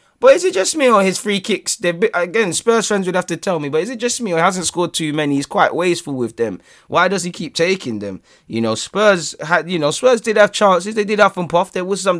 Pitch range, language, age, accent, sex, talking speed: 125-175 Hz, English, 20-39, British, male, 290 wpm